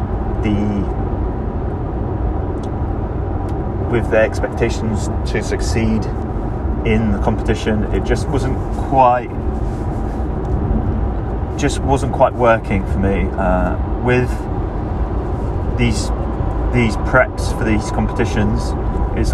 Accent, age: British, 30-49